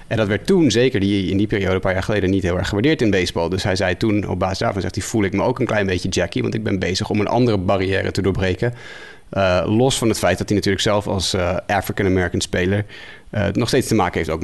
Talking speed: 270 wpm